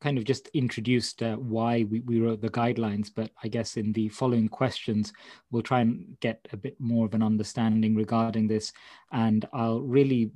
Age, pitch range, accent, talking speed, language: 20-39, 105-115 Hz, British, 190 wpm, English